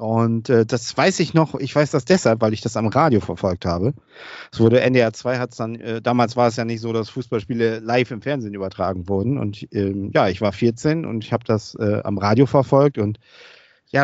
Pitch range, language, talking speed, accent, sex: 110-130 Hz, German, 220 wpm, German, male